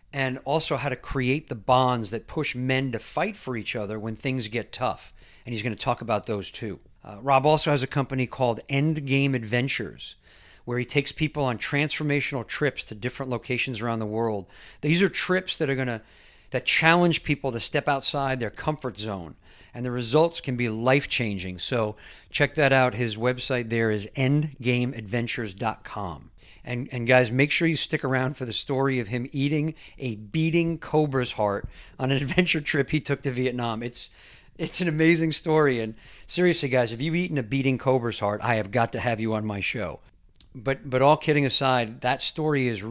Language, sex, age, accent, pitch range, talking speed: English, male, 50-69, American, 115-145 Hz, 190 wpm